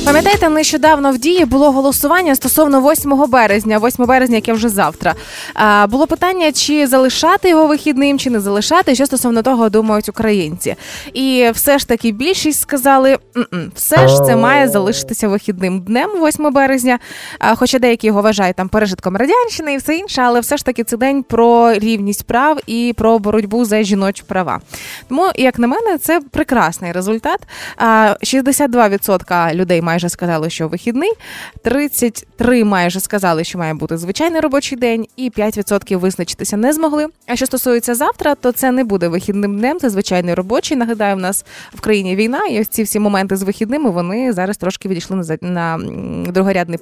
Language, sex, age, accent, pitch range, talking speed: Ukrainian, female, 20-39, native, 200-275 Hz, 165 wpm